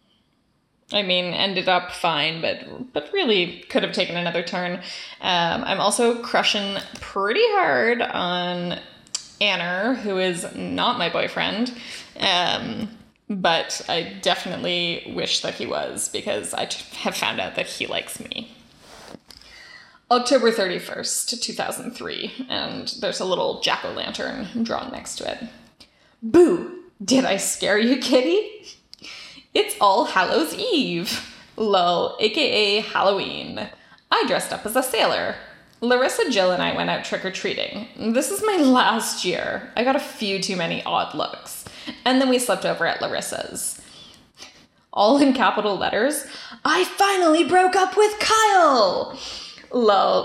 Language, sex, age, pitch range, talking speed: English, female, 10-29, 195-290 Hz, 135 wpm